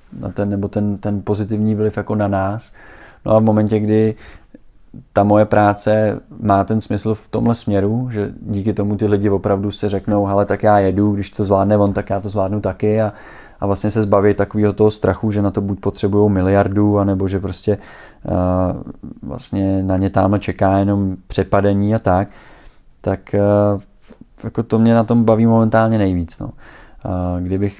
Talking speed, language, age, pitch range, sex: 185 wpm, Czech, 20-39, 100-110 Hz, male